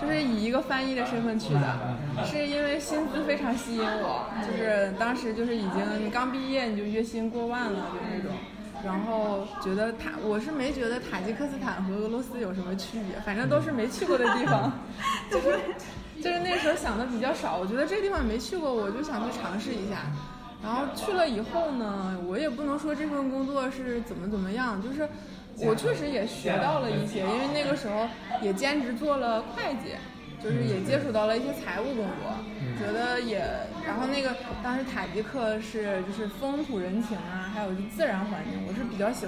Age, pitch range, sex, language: 20-39, 205-255 Hz, female, Chinese